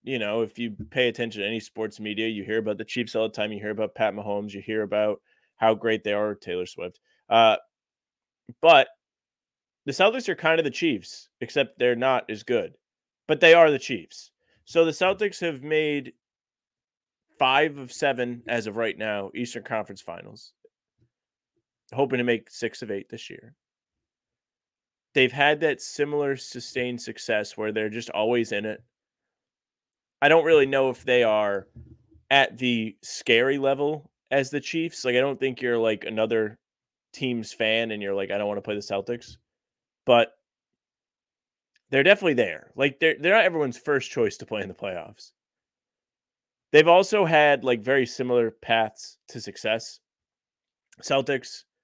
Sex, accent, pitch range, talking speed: male, American, 110-140 Hz, 170 wpm